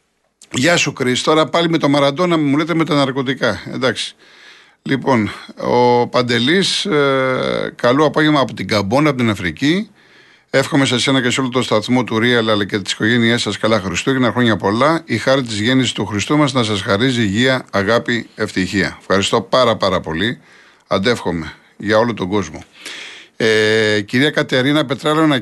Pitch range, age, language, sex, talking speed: 110-140 Hz, 50-69, Greek, male, 170 wpm